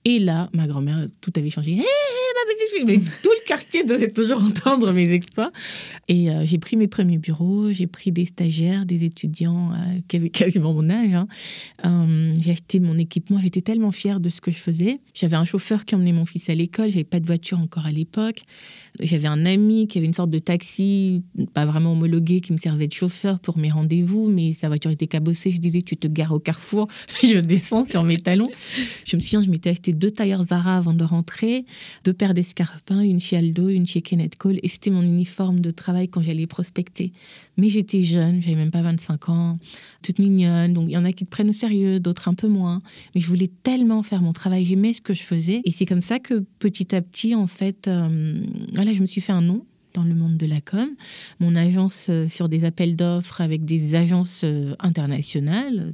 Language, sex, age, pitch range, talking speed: French, female, 30-49, 170-200 Hz, 225 wpm